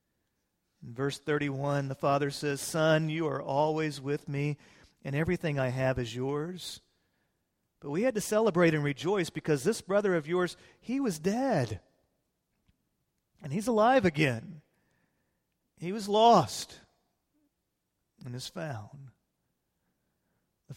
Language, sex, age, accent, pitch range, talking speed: English, male, 40-59, American, 140-185 Hz, 125 wpm